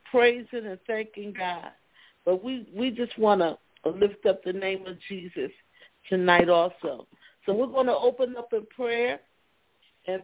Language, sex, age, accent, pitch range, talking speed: English, female, 50-69, American, 225-270 Hz, 160 wpm